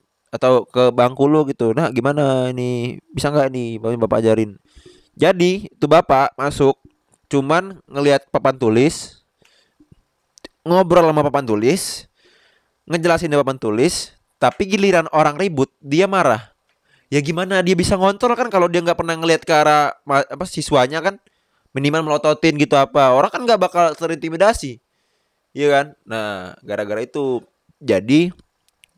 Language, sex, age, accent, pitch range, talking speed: Indonesian, male, 20-39, native, 110-155 Hz, 135 wpm